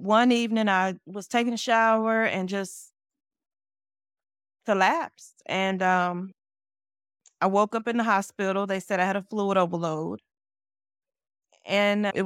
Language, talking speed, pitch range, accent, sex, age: English, 130 wpm, 180-215 Hz, American, female, 20-39